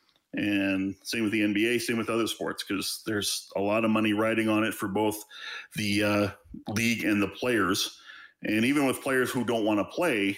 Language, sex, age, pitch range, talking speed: English, male, 40-59, 100-125 Hz, 200 wpm